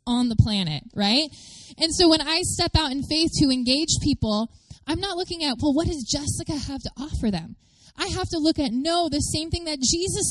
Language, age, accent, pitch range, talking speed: English, 20-39, American, 200-295 Hz, 220 wpm